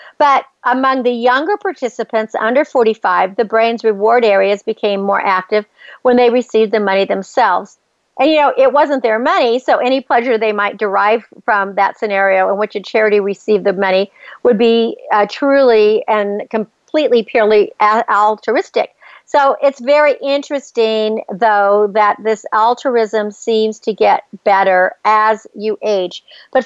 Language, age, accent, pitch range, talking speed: English, 50-69, American, 210-265 Hz, 150 wpm